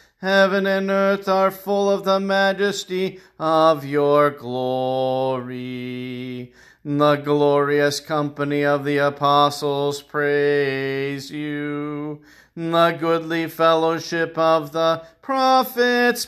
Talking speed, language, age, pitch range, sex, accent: 90 wpm, English, 40-59, 145-195 Hz, male, American